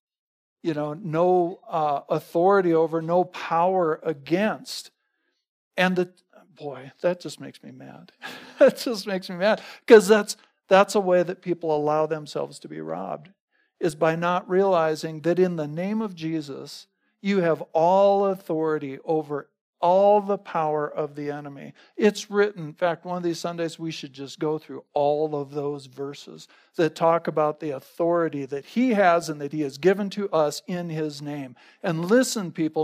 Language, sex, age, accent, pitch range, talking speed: English, male, 50-69, American, 155-200 Hz, 170 wpm